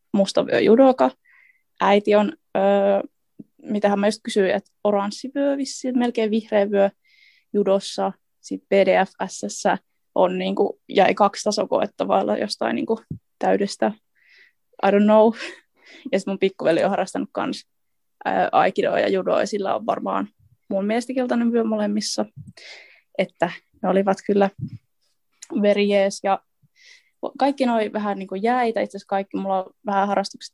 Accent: native